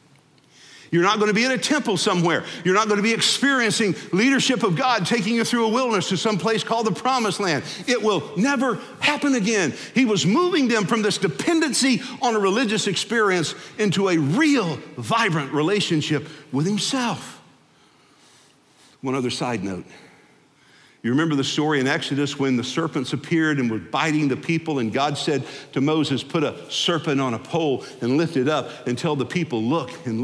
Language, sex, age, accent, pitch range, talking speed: English, male, 50-69, American, 140-215 Hz, 180 wpm